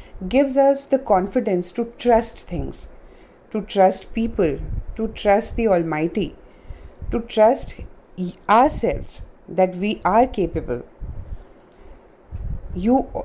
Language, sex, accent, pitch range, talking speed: English, female, Indian, 175-230 Hz, 100 wpm